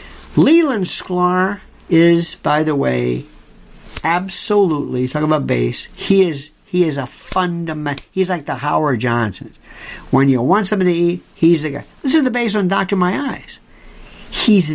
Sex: male